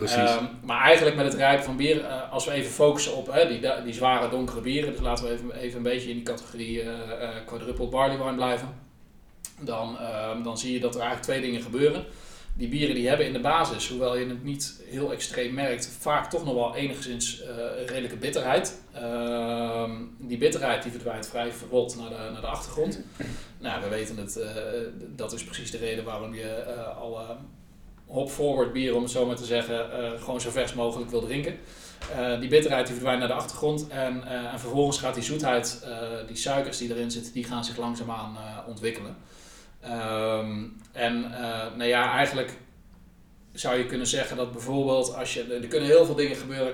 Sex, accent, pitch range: male, Dutch, 115-130 Hz